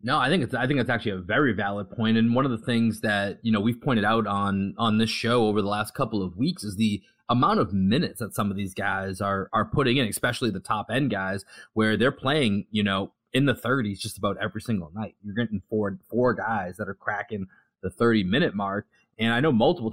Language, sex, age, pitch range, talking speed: English, male, 20-39, 100-120 Hz, 245 wpm